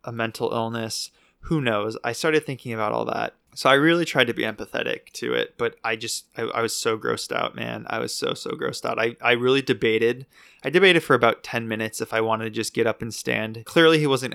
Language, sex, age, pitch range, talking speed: English, male, 20-39, 115-140 Hz, 245 wpm